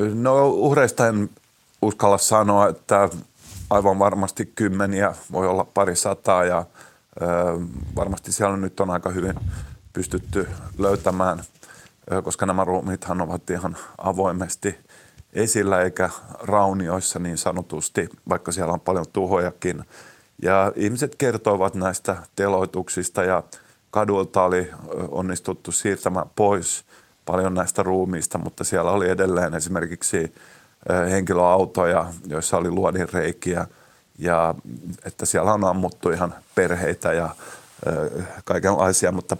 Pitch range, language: 90-100 Hz, Finnish